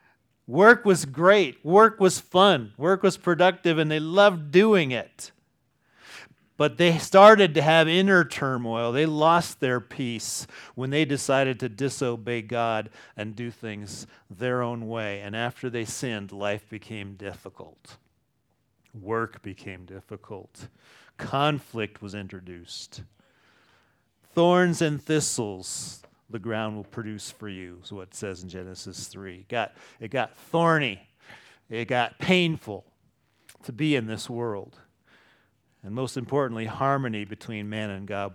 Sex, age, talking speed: male, 40-59, 135 wpm